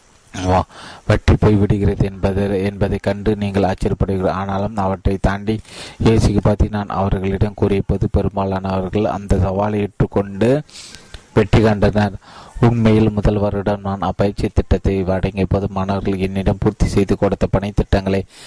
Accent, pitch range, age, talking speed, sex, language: native, 95-105 Hz, 30-49, 115 wpm, male, Tamil